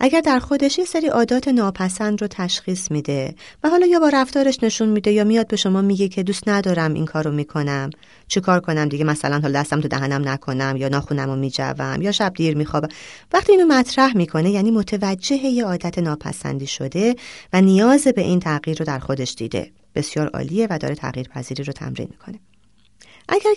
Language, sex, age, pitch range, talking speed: Persian, female, 30-49, 145-240 Hz, 185 wpm